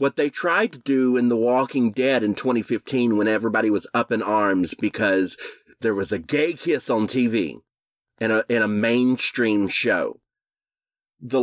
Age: 30-49